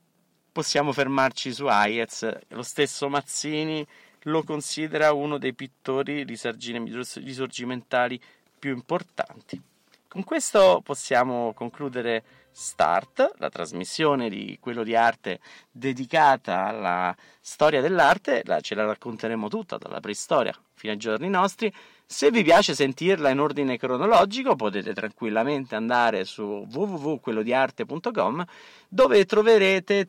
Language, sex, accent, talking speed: Italian, male, native, 110 wpm